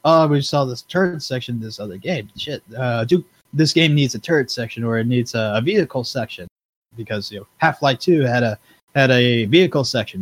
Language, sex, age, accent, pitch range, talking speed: English, male, 20-39, American, 110-145 Hz, 215 wpm